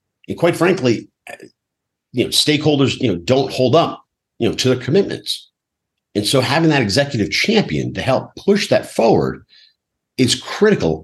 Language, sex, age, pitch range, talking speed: English, male, 50-69, 100-150 Hz, 160 wpm